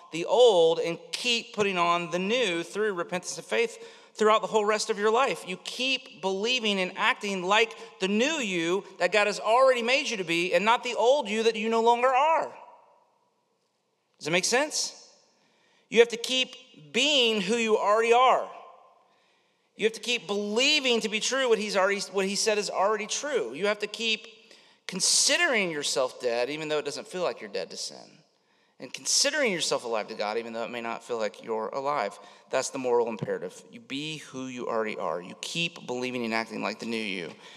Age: 40-59